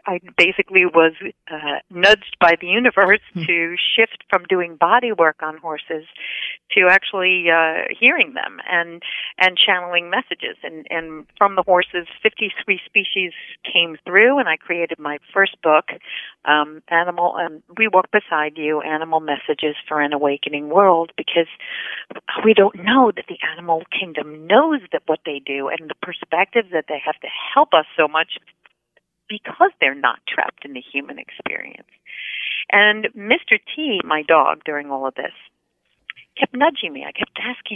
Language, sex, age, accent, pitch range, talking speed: English, female, 50-69, American, 155-210 Hz, 160 wpm